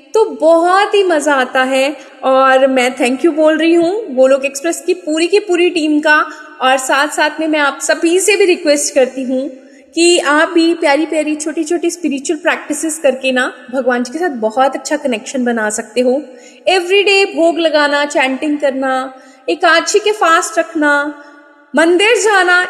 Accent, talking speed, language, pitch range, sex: native, 170 wpm, Hindi, 265-335 Hz, female